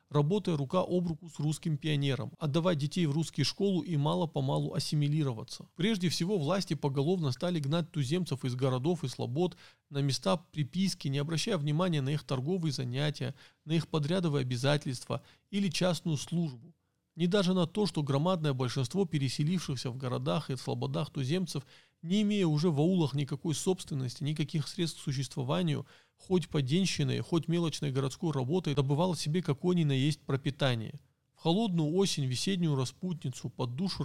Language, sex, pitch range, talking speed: Russian, male, 140-175 Hz, 155 wpm